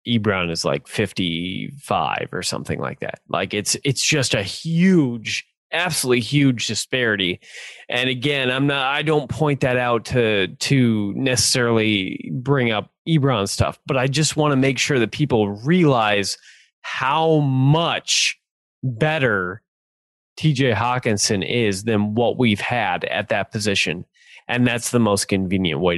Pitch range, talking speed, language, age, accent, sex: 105-140 Hz, 145 wpm, English, 20-39, American, male